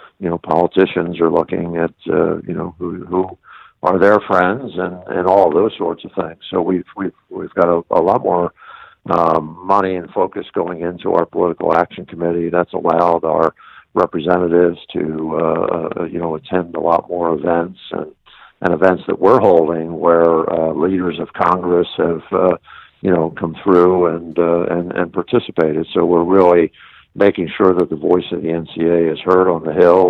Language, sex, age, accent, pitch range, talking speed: English, male, 60-79, American, 85-90 Hz, 185 wpm